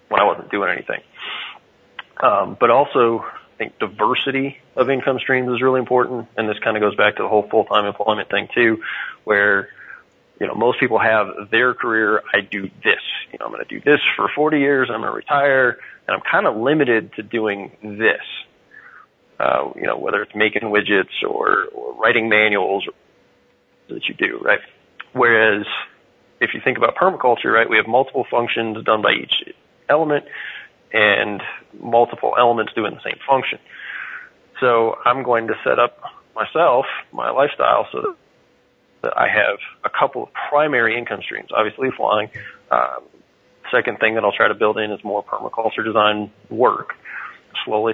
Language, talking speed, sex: English, 170 wpm, male